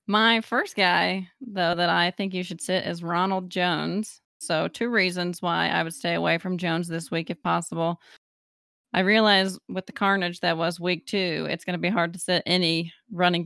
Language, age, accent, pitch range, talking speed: English, 20-39, American, 175-205 Hz, 200 wpm